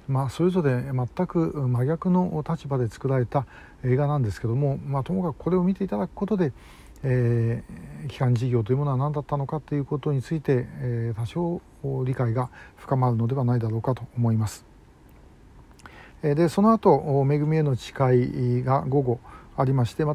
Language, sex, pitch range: Japanese, male, 125-165 Hz